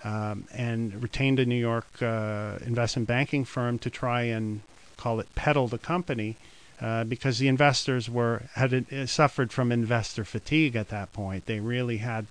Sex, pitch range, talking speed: male, 115-135 Hz, 170 wpm